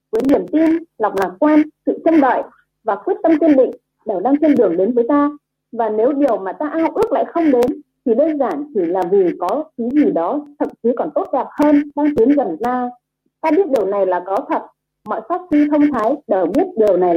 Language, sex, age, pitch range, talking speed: Vietnamese, female, 30-49, 235-320 Hz, 240 wpm